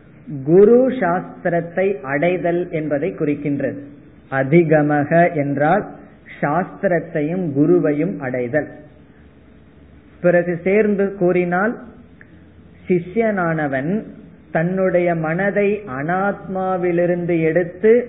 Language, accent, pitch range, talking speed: Tamil, native, 140-175 Hz, 55 wpm